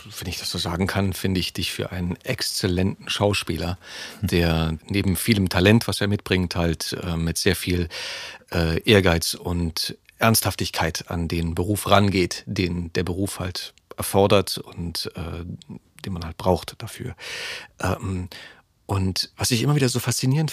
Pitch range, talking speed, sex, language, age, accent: 90-115 Hz, 155 wpm, male, German, 40-59, German